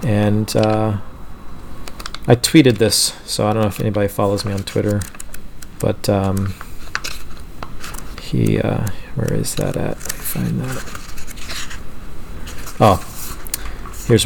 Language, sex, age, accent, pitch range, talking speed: English, male, 40-59, American, 95-115 Hz, 120 wpm